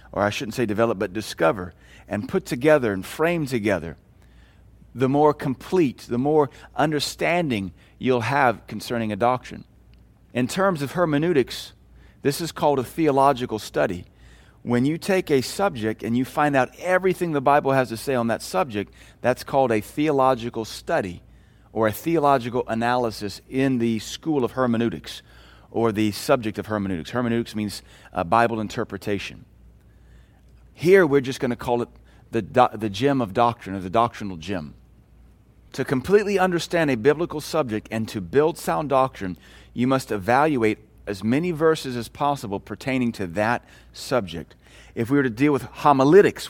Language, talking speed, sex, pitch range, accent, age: English, 155 wpm, male, 110-145 Hz, American, 40-59